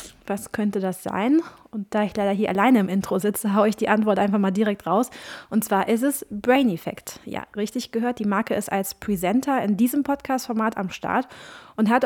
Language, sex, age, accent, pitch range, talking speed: German, female, 20-39, German, 200-245 Hz, 210 wpm